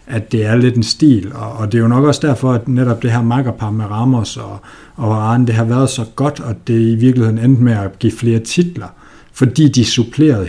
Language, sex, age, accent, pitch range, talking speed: Danish, male, 60-79, native, 110-130 Hz, 240 wpm